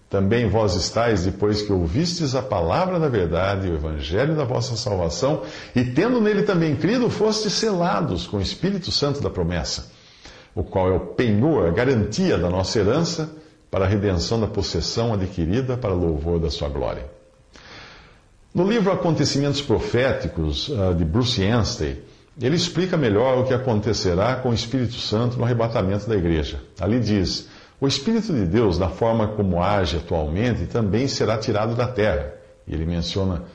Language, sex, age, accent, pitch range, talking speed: Portuguese, male, 50-69, Brazilian, 95-135 Hz, 160 wpm